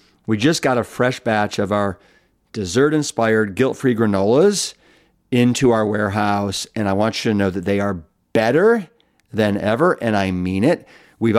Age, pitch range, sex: 50-69, 105-135 Hz, male